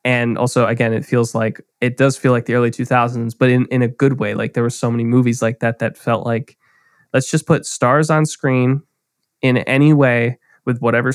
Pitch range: 115-135 Hz